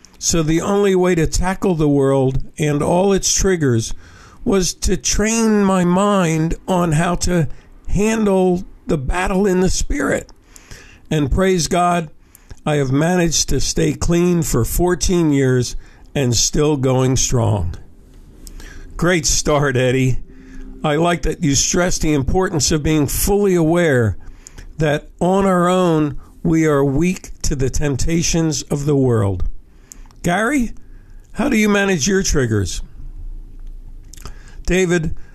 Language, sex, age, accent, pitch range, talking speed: English, male, 50-69, American, 135-180 Hz, 130 wpm